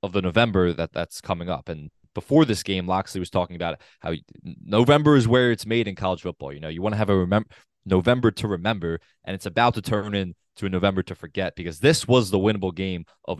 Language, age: English, 20-39